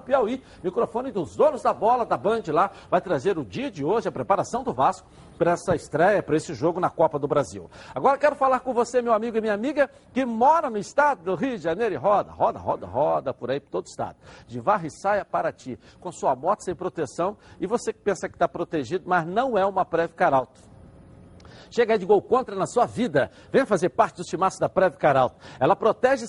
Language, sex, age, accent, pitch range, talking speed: Portuguese, male, 60-79, Brazilian, 180-255 Hz, 220 wpm